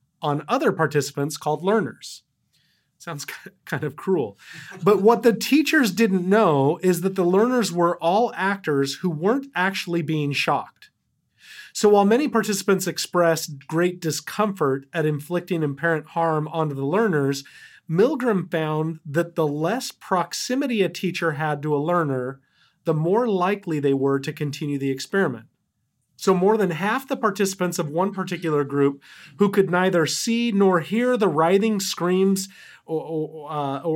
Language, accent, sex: English, American, male